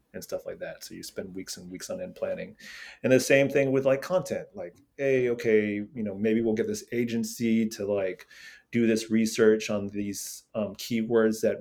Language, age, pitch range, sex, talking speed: English, 30-49, 100-115 Hz, male, 205 wpm